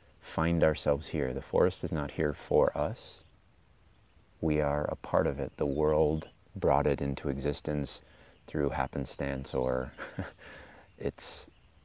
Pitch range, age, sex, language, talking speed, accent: 70-90 Hz, 30-49, male, English, 130 wpm, American